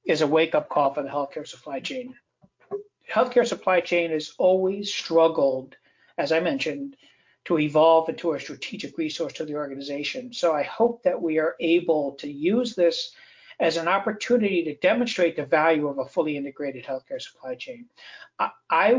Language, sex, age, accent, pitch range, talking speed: English, male, 60-79, American, 150-200 Hz, 165 wpm